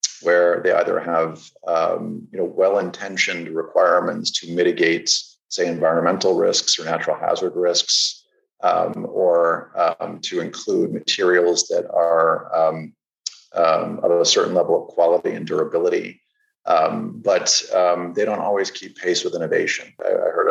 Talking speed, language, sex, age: 140 wpm, English, male, 40-59